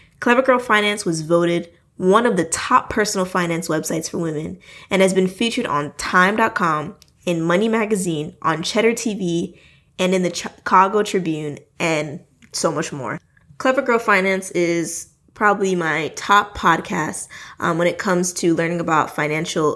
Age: 20-39